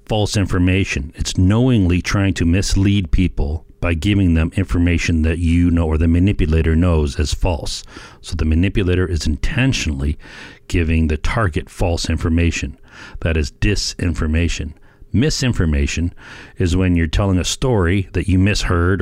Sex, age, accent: male, 40-59, American